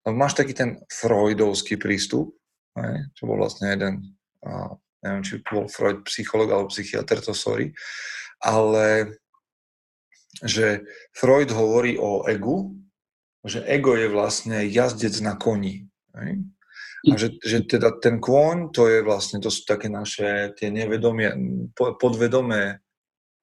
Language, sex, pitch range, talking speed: Slovak, male, 105-125 Hz, 120 wpm